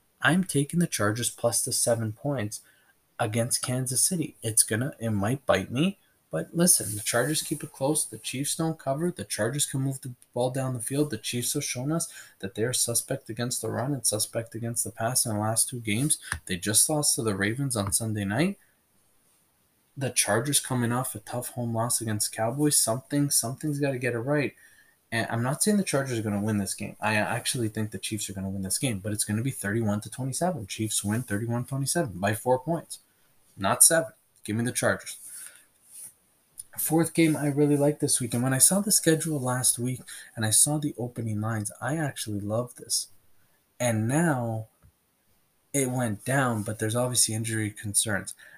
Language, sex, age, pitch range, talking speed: English, male, 20-39, 110-145 Hz, 200 wpm